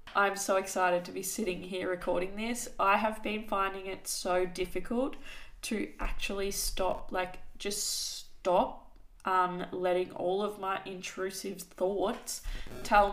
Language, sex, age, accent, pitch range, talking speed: English, female, 20-39, Australian, 185-225 Hz, 135 wpm